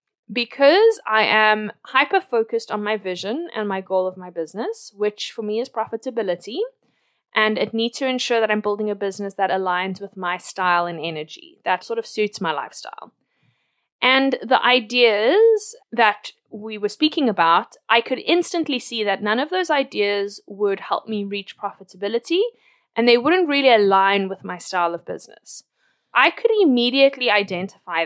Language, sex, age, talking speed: English, female, 20-39, 165 wpm